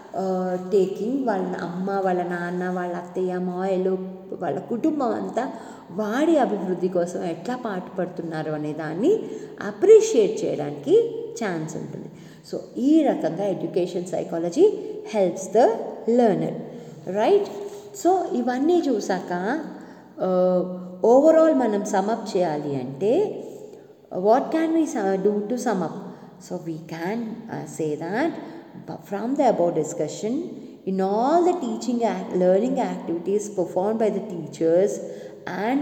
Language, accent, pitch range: English, Indian, 180-250 Hz